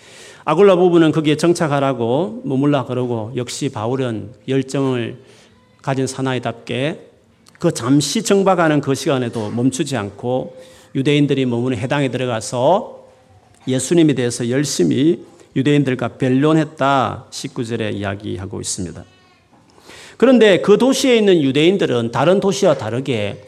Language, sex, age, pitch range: Korean, male, 40-59, 120-170 Hz